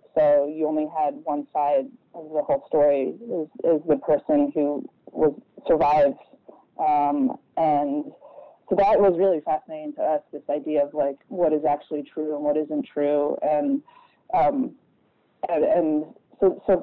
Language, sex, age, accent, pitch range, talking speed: English, female, 20-39, American, 150-195 Hz, 150 wpm